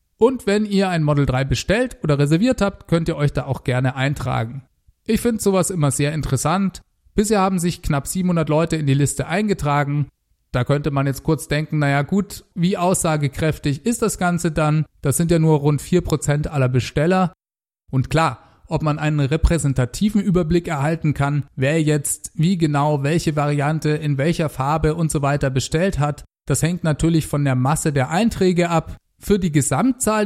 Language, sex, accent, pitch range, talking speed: German, male, German, 140-180 Hz, 180 wpm